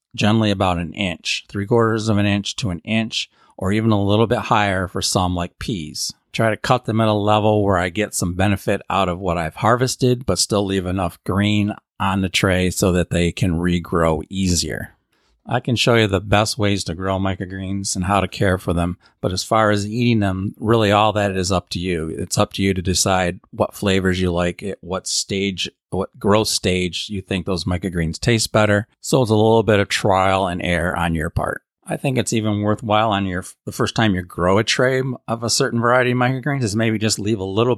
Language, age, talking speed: English, 40-59, 225 wpm